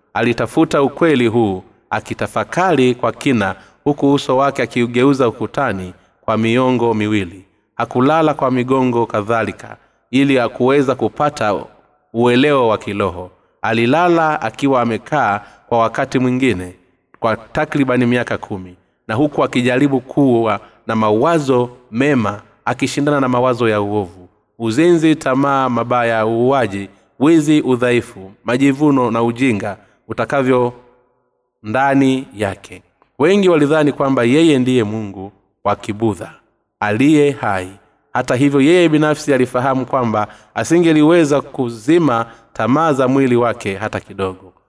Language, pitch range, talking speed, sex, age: Swahili, 105-135 Hz, 110 wpm, male, 30-49